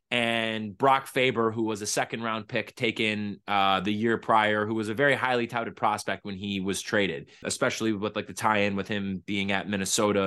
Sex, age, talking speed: male, 20-39, 210 wpm